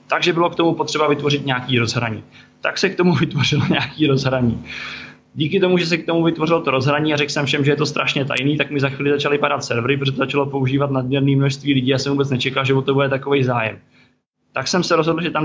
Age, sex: 20-39, male